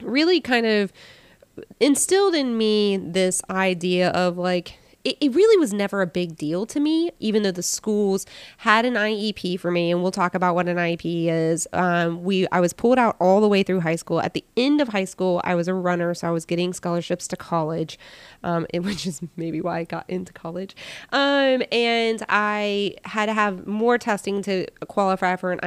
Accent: American